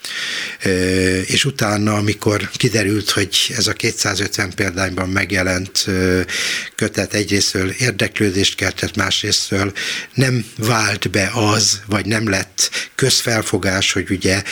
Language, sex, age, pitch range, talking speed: Hungarian, male, 60-79, 95-110 Hz, 105 wpm